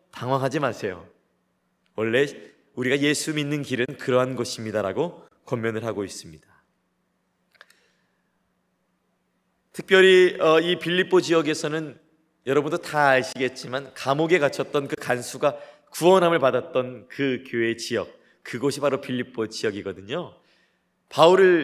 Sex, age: male, 30-49